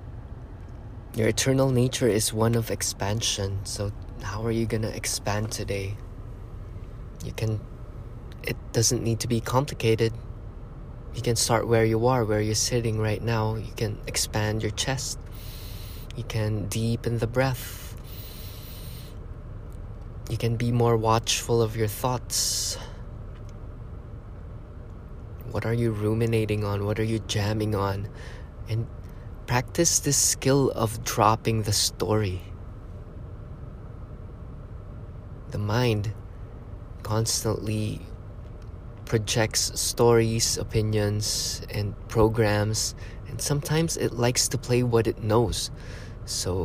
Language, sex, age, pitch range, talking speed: English, male, 20-39, 100-115 Hz, 115 wpm